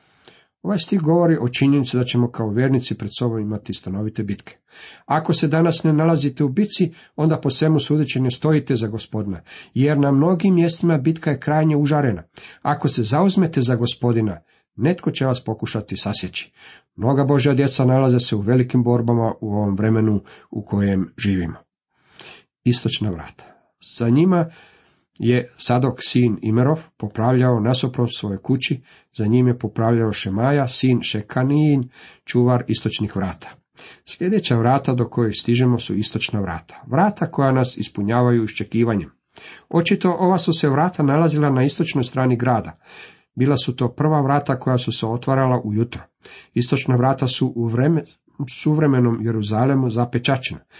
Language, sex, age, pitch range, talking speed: Croatian, male, 50-69, 115-145 Hz, 145 wpm